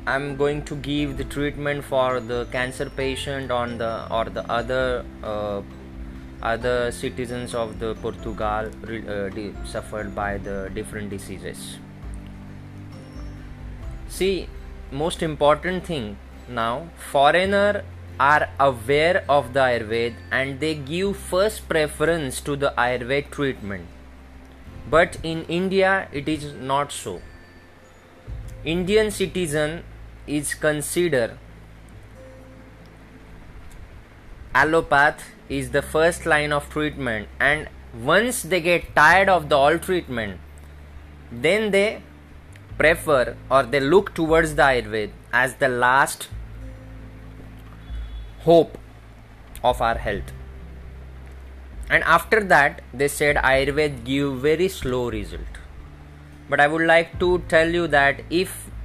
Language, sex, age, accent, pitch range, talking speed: English, male, 20-39, Indian, 100-150 Hz, 115 wpm